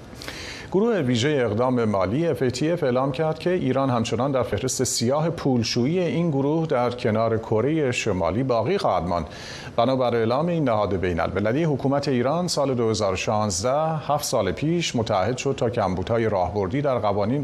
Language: Persian